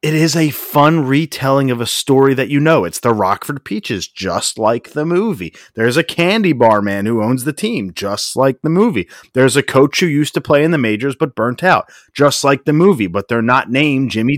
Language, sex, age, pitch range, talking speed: English, male, 30-49, 110-150 Hz, 225 wpm